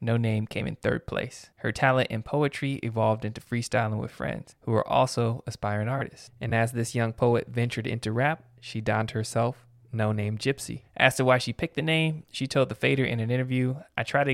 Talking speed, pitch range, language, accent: 215 wpm, 105-125 Hz, English, American